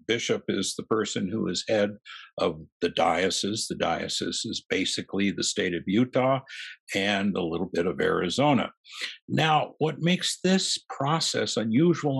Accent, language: American, English